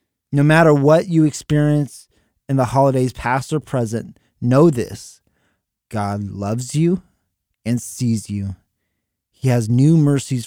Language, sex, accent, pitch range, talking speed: English, male, American, 105-140 Hz, 130 wpm